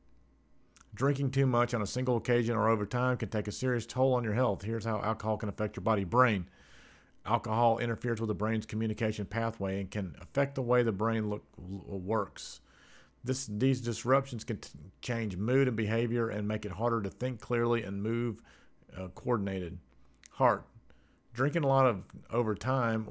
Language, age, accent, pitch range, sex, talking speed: English, 50-69, American, 105-125 Hz, male, 175 wpm